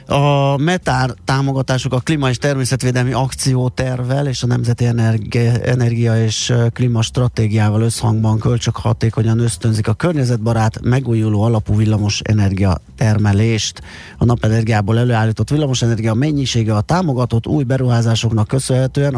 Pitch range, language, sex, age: 110-130 Hz, Hungarian, male, 30-49